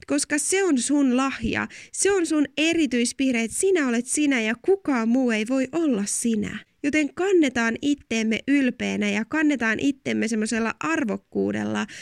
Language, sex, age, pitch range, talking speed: Finnish, female, 20-39, 215-285 Hz, 145 wpm